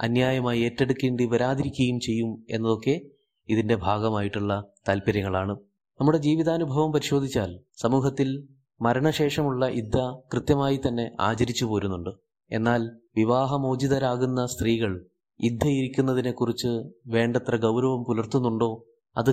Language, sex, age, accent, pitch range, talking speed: Malayalam, male, 20-39, native, 115-135 Hz, 80 wpm